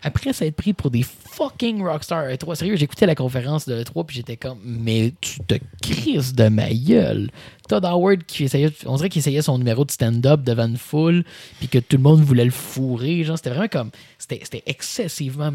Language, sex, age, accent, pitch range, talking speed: French, male, 20-39, Canadian, 120-165 Hz, 210 wpm